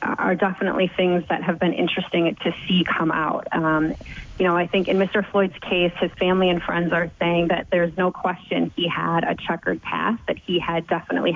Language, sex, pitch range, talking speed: English, female, 170-195 Hz, 205 wpm